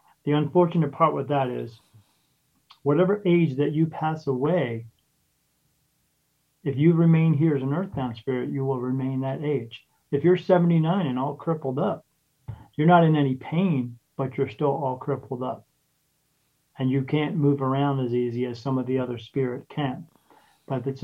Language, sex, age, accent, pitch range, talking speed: English, male, 40-59, American, 135-160 Hz, 170 wpm